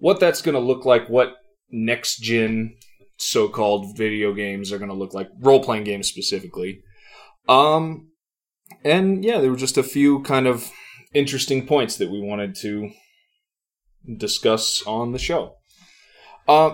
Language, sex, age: English, male, 20-39